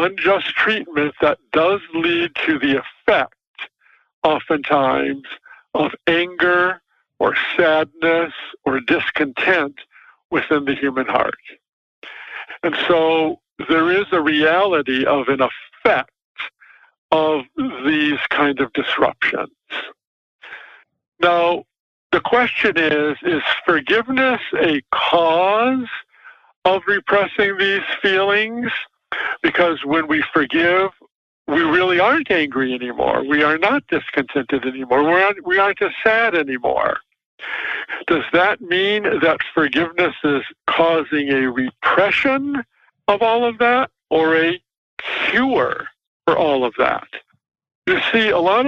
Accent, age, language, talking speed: American, 60-79, English, 110 wpm